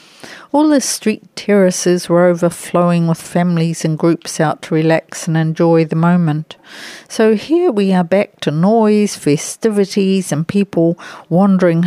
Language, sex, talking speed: English, female, 140 wpm